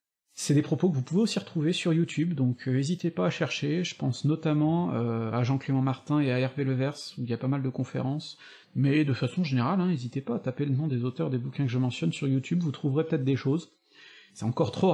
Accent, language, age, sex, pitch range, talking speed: French, French, 40-59, male, 125-155 Hz, 255 wpm